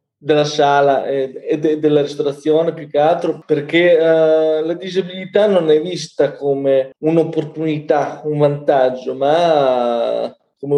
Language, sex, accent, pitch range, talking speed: Italian, male, native, 145-180 Hz, 110 wpm